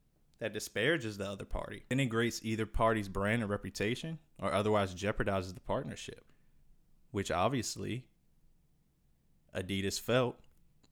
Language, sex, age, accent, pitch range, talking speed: English, male, 20-39, American, 95-110 Hz, 110 wpm